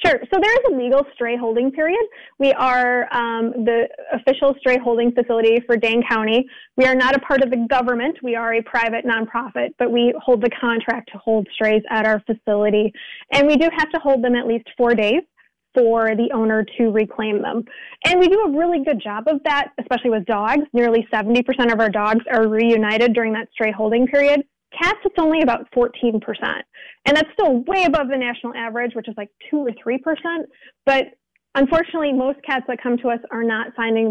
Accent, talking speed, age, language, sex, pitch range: American, 200 wpm, 20-39, English, female, 225-265 Hz